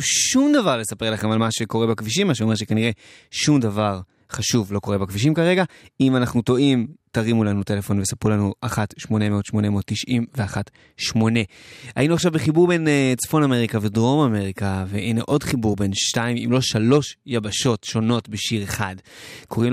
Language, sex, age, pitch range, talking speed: Hebrew, male, 20-39, 105-125 Hz, 150 wpm